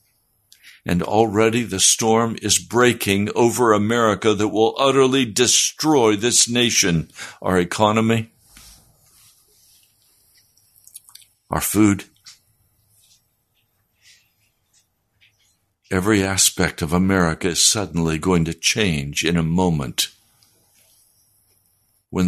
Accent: American